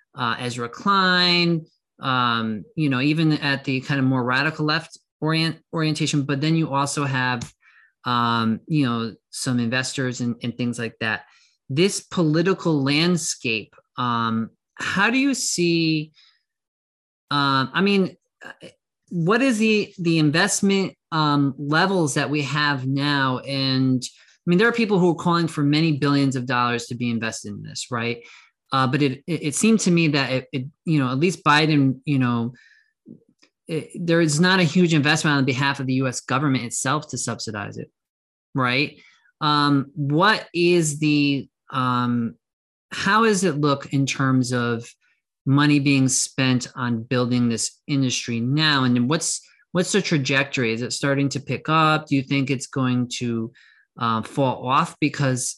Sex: male